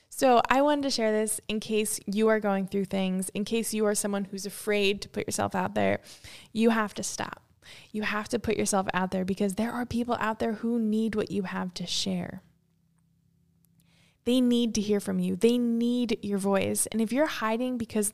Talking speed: 210 wpm